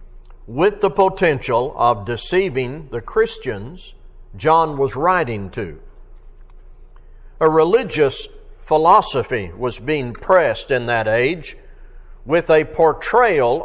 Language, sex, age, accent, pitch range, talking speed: English, male, 60-79, American, 125-190 Hz, 100 wpm